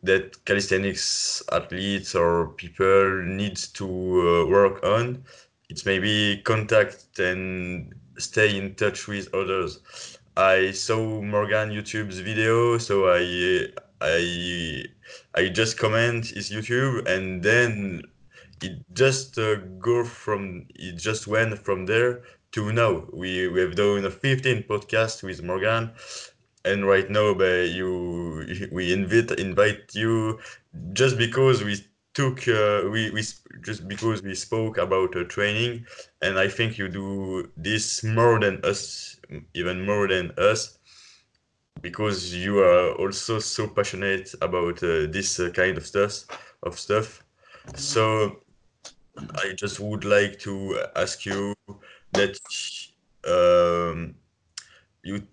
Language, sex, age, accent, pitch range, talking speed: French, male, 20-39, French, 95-110 Hz, 125 wpm